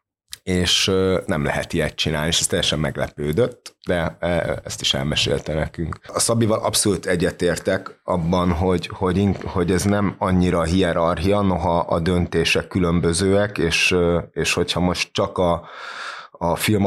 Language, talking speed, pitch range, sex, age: Hungarian, 155 wpm, 80-95 Hz, male, 30-49